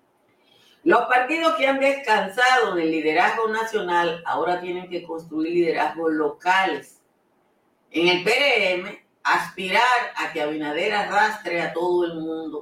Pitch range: 150-210 Hz